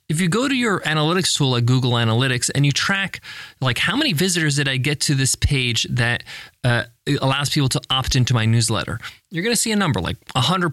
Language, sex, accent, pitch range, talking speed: English, male, American, 130-195 Hz, 225 wpm